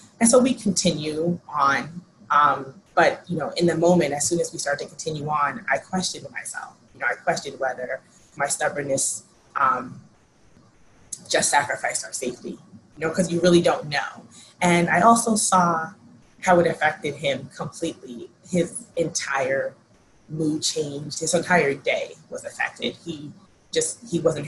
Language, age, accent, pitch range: English, 20-39, American, 145-180 Hz